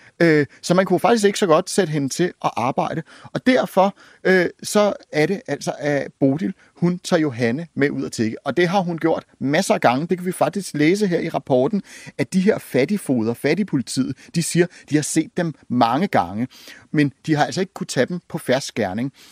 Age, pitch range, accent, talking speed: 30-49, 145-195 Hz, native, 210 wpm